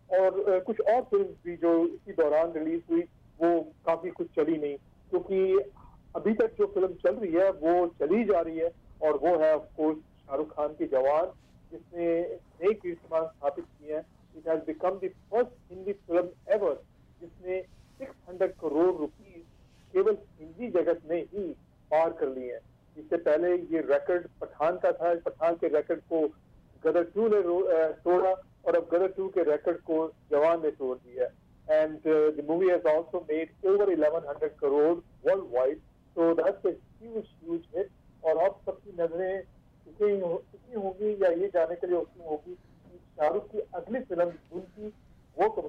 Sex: male